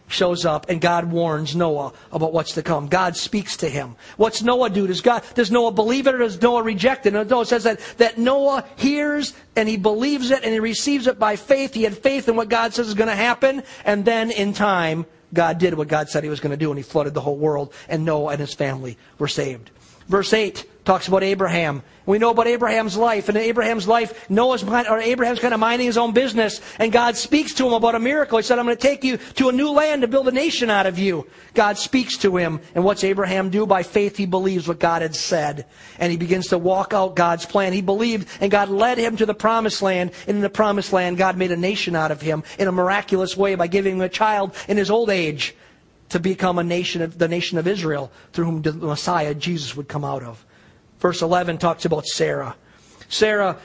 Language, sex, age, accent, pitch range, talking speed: English, male, 50-69, American, 170-235 Hz, 235 wpm